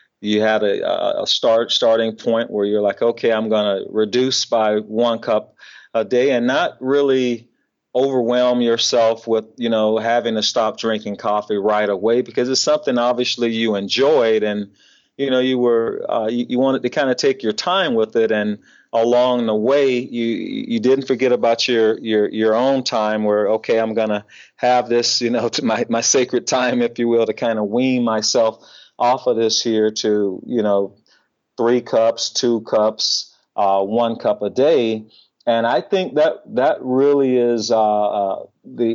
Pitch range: 110-125 Hz